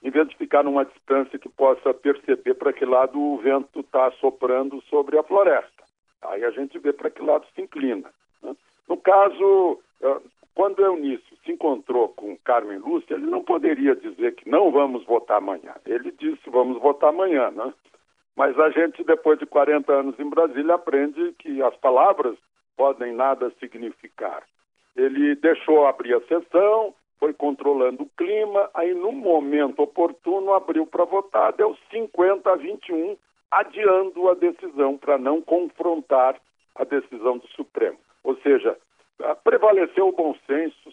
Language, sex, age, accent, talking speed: Portuguese, male, 60-79, Brazilian, 155 wpm